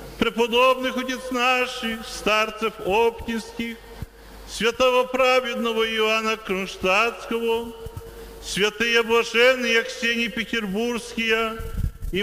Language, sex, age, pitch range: Polish, male, 40-59, 225-250 Hz